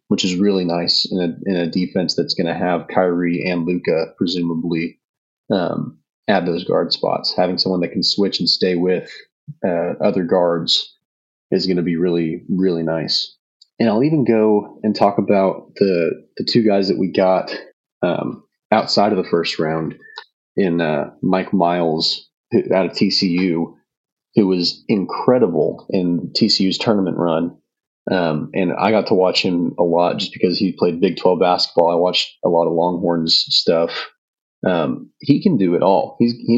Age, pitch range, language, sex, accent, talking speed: 30-49, 85-100 Hz, English, male, American, 170 wpm